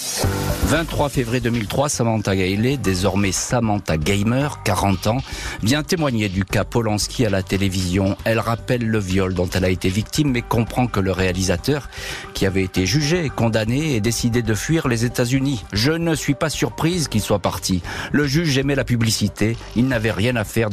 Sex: male